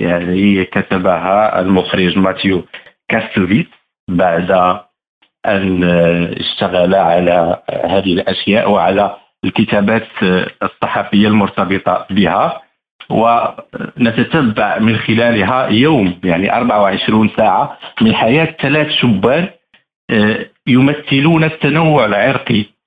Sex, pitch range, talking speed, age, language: male, 95-135 Hz, 80 wpm, 50-69, Arabic